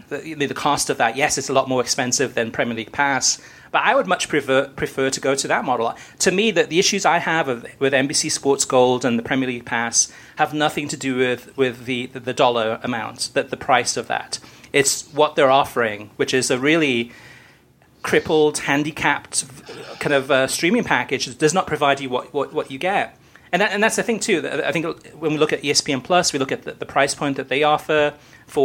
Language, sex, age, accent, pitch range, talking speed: English, male, 40-59, British, 125-150 Hz, 230 wpm